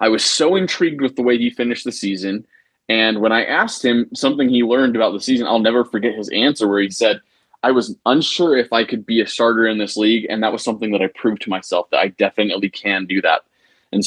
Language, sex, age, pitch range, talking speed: English, male, 20-39, 105-125 Hz, 250 wpm